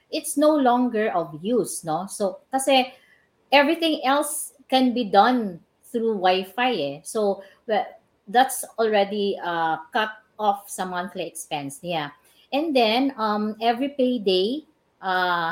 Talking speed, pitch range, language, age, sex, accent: 125 wpm, 175-240 Hz, English, 50-69, female, Filipino